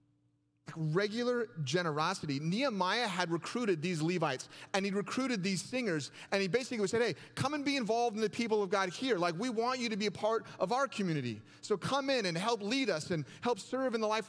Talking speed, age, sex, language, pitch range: 215 wpm, 30-49, male, English, 145-230 Hz